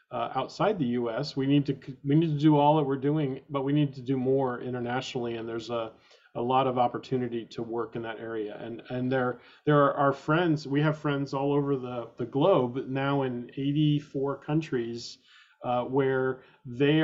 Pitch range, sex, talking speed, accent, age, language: 125-140 Hz, male, 200 wpm, American, 40-59, English